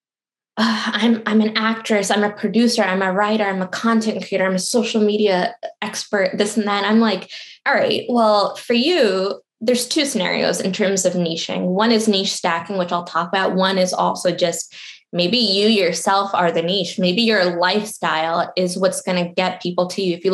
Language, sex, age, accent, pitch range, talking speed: English, female, 10-29, American, 180-220 Hz, 200 wpm